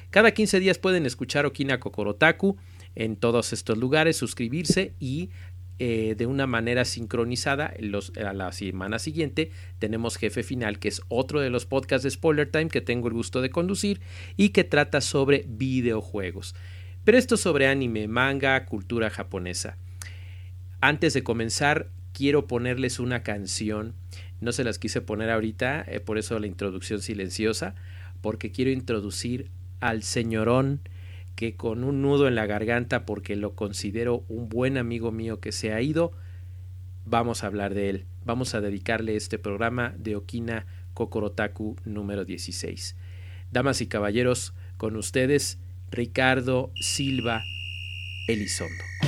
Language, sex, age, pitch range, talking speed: Spanish, male, 40-59, 95-130 Hz, 145 wpm